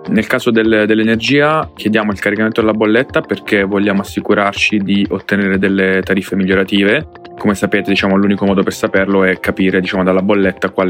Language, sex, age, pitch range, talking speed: Italian, male, 20-39, 95-105 Hz, 165 wpm